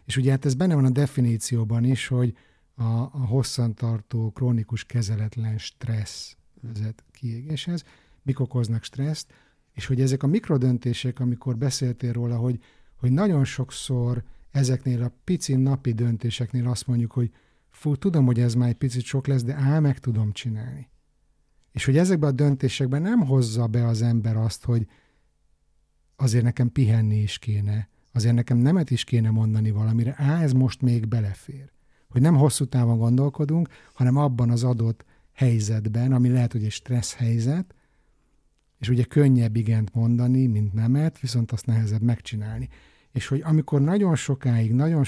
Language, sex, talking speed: Hungarian, male, 155 wpm